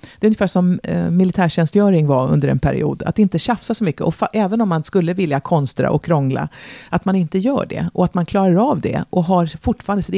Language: Swedish